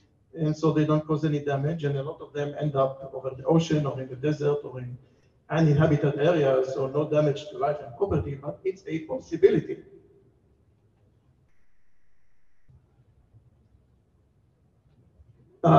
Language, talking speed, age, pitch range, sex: English, 140 wpm, 60-79, 140-170 Hz, male